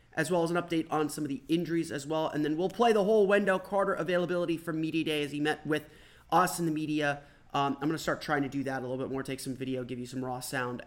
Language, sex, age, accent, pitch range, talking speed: English, male, 30-49, American, 135-170 Hz, 295 wpm